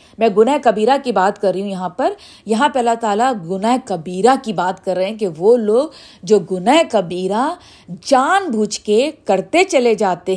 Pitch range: 205-280 Hz